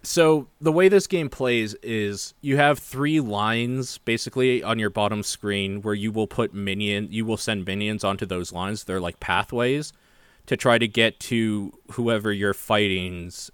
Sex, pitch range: male, 95-110 Hz